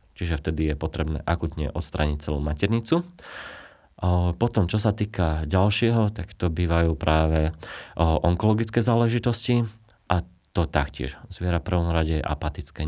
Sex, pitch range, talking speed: male, 80-95 Hz, 125 wpm